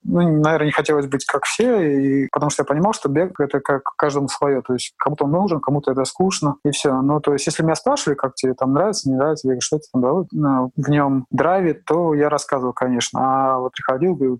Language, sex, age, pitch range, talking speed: Russian, male, 20-39, 130-150 Hz, 235 wpm